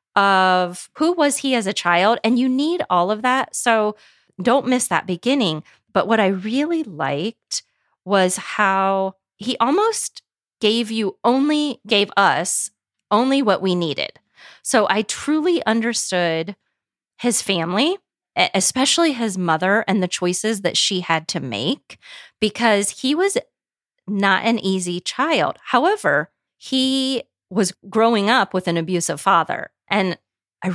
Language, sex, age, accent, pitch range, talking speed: English, female, 30-49, American, 180-240 Hz, 140 wpm